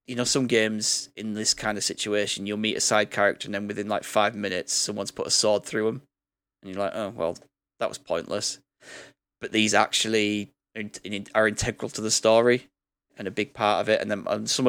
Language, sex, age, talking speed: English, male, 10-29, 215 wpm